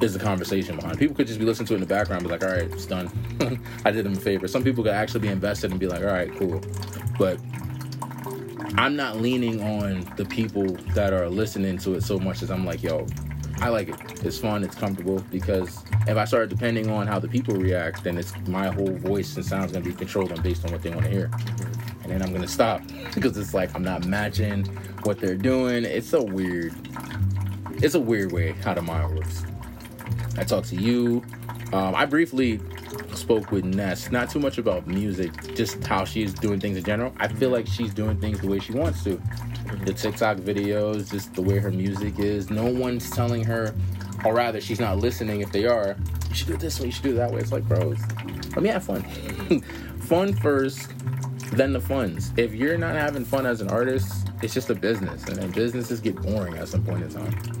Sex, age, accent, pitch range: male, 20-39, American, 95-115 Hz